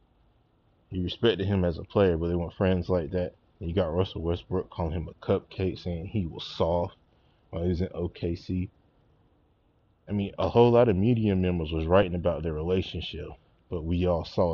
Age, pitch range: 20-39, 85-95 Hz